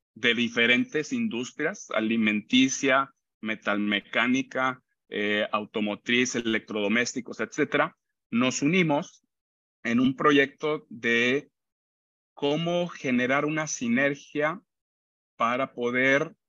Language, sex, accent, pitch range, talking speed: Spanish, male, Mexican, 110-150 Hz, 75 wpm